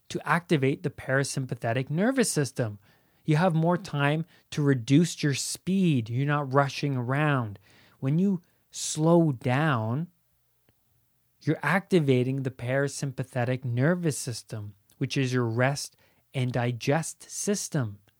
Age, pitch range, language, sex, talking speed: 30-49, 120-160 Hz, English, male, 115 wpm